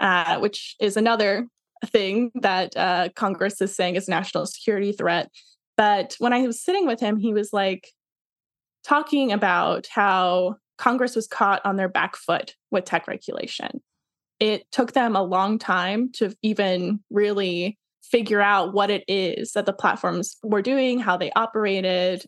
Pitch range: 195-240 Hz